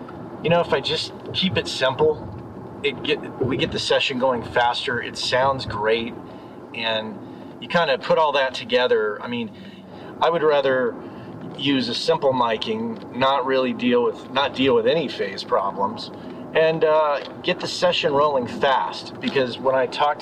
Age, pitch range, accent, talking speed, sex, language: 40-59, 125-195 Hz, American, 170 wpm, male, English